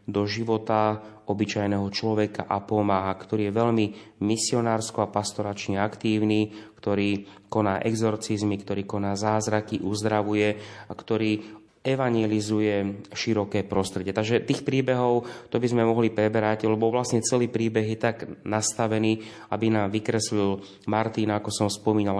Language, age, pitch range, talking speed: Slovak, 30-49, 100-115 Hz, 125 wpm